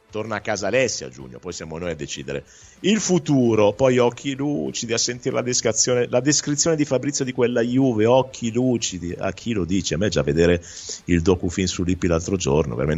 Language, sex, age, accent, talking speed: Italian, male, 50-69, native, 210 wpm